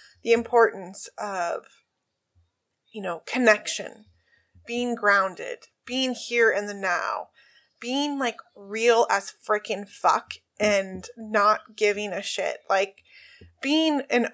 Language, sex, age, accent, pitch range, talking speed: English, female, 20-39, American, 215-285 Hz, 115 wpm